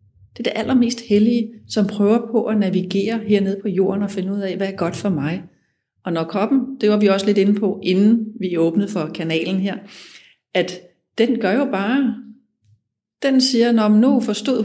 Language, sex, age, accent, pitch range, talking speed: Danish, female, 30-49, native, 165-210 Hz, 195 wpm